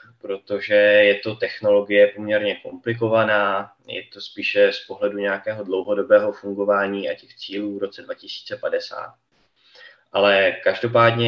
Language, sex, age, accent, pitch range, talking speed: Czech, male, 20-39, native, 100-115 Hz, 115 wpm